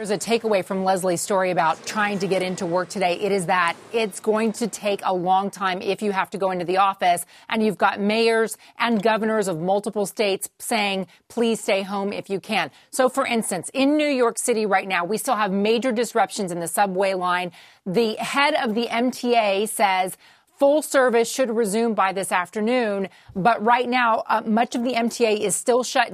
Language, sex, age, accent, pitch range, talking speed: English, female, 30-49, American, 200-235 Hz, 205 wpm